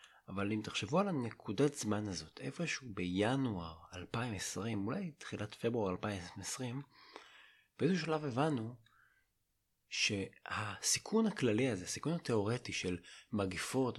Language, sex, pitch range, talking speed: Hebrew, male, 95-125 Hz, 105 wpm